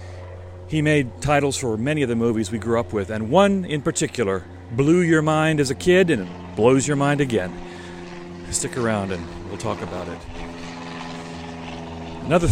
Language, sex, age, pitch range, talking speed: English, male, 40-59, 90-135 Hz, 175 wpm